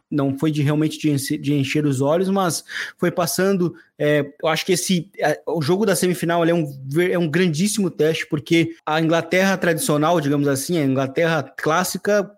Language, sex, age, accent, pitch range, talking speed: Portuguese, male, 20-39, Brazilian, 150-180 Hz, 170 wpm